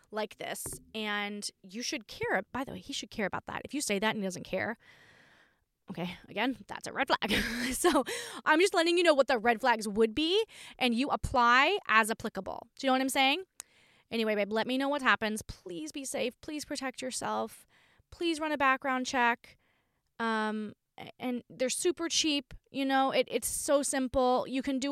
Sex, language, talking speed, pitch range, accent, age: female, English, 200 wpm, 220-290 Hz, American, 20-39